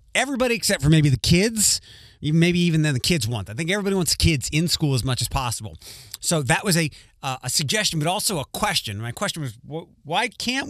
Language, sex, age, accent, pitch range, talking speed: English, male, 30-49, American, 115-175 Hz, 215 wpm